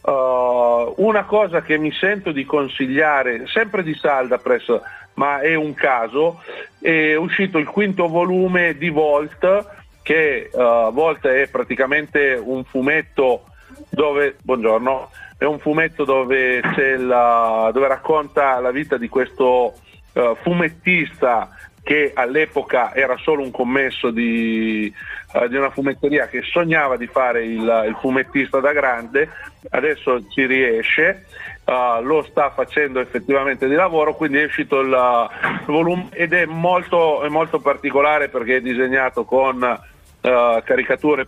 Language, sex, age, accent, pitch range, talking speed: Italian, male, 40-59, native, 125-155 Hz, 130 wpm